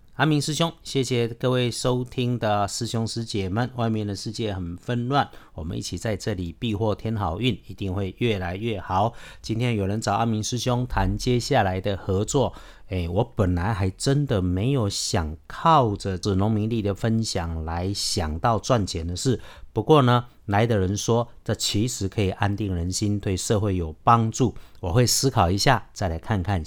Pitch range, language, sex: 95-120 Hz, Chinese, male